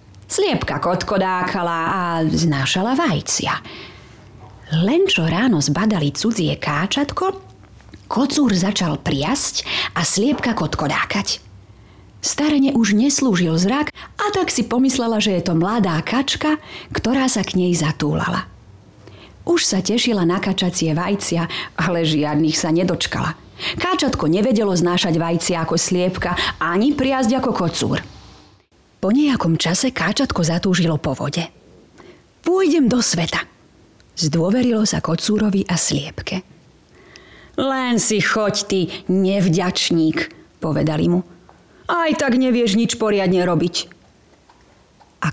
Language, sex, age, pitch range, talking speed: Slovak, female, 30-49, 165-240 Hz, 115 wpm